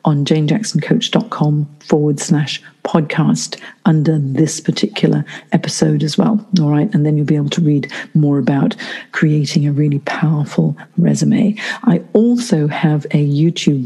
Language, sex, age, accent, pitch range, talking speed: English, female, 50-69, British, 155-215 Hz, 140 wpm